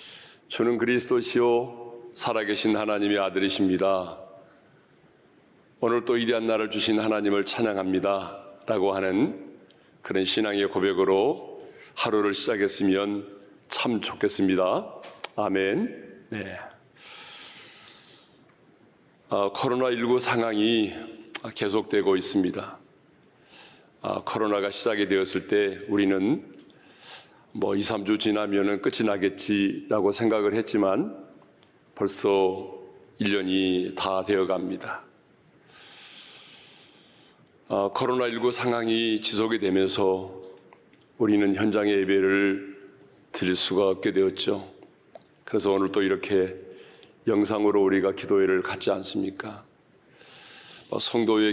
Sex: male